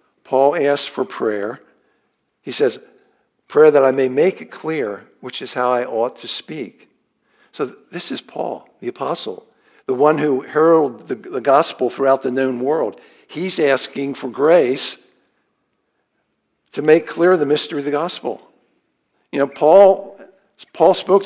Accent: American